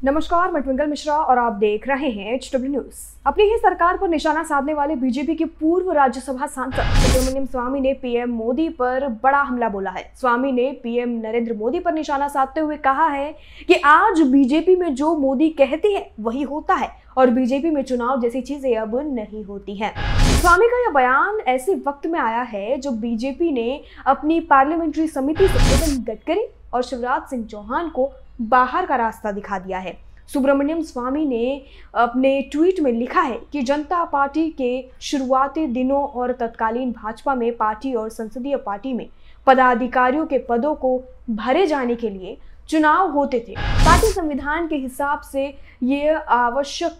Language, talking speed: Hindi, 170 wpm